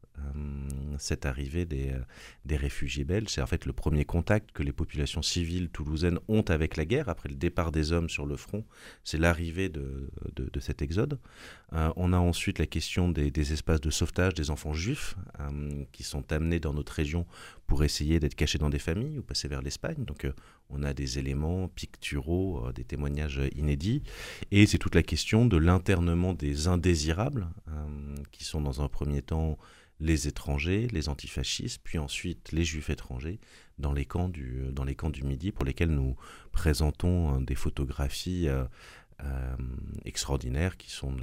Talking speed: 180 wpm